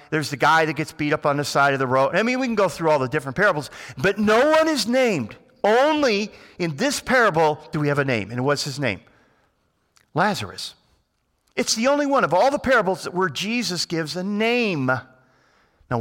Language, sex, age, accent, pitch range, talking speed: English, male, 50-69, American, 125-180 Hz, 215 wpm